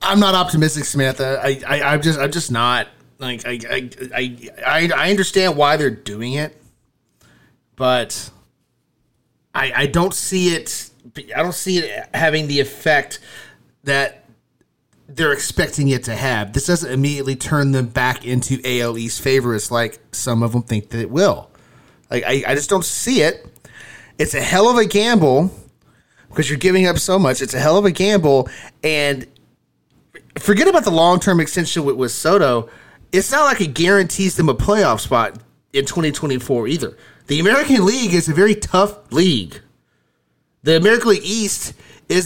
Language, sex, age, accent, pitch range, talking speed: English, male, 30-49, American, 130-190 Hz, 165 wpm